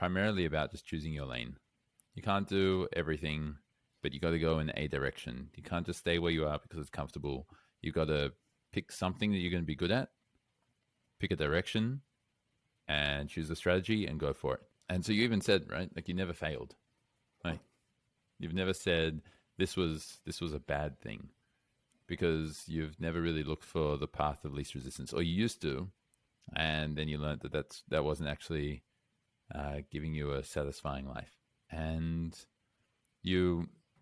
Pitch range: 75-95 Hz